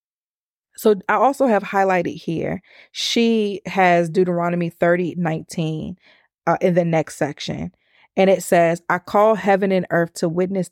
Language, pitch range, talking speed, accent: English, 175-215 Hz, 145 wpm, American